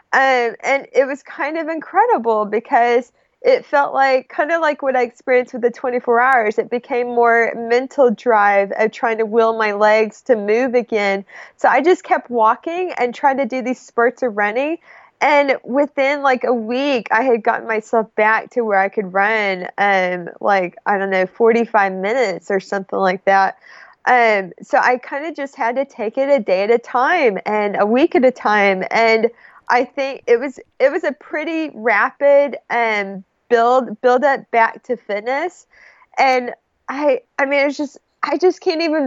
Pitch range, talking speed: 220-280 Hz, 185 wpm